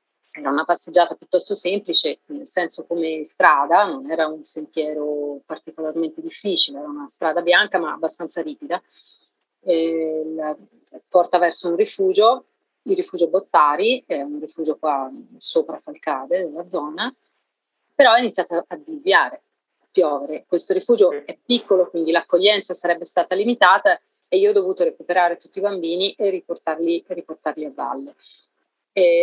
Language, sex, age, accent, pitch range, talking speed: Italian, female, 30-49, native, 155-240 Hz, 140 wpm